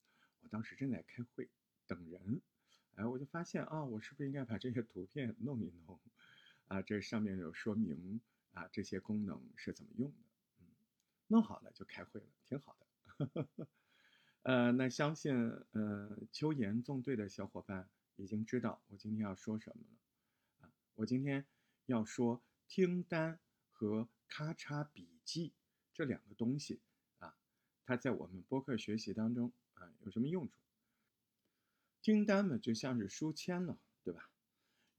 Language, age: Chinese, 50-69